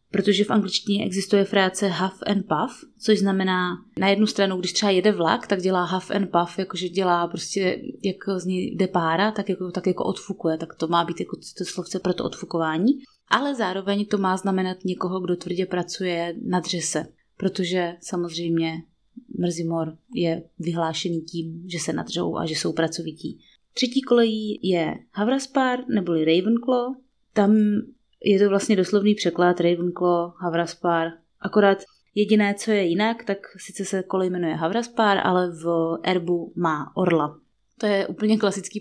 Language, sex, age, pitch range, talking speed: Czech, female, 20-39, 175-200 Hz, 160 wpm